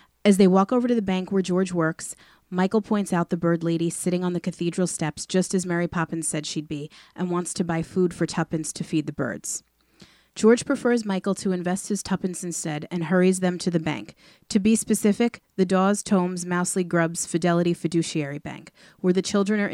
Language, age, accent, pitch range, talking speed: English, 30-49, American, 165-190 Hz, 205 wpm